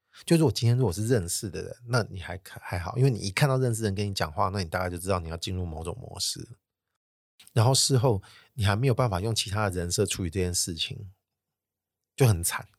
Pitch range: 95-115 Hz